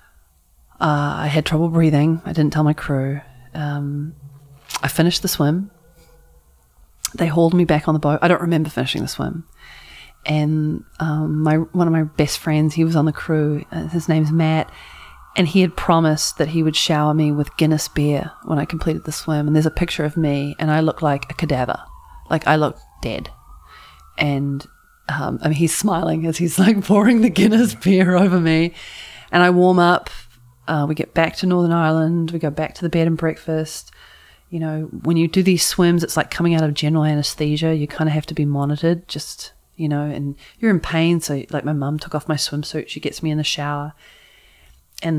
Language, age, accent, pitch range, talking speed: English, 30-49, Australian, 150-170 Hz, 205 wpm